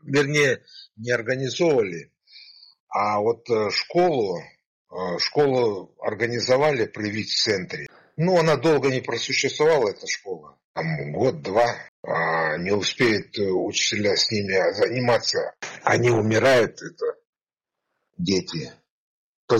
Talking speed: 100 wpm